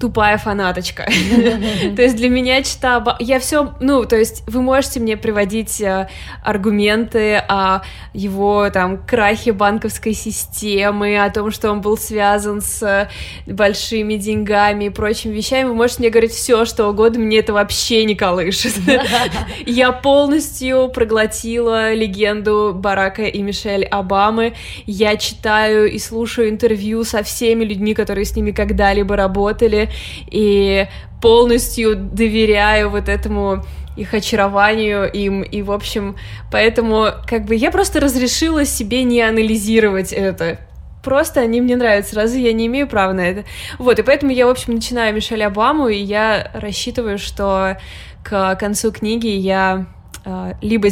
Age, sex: 20-39, female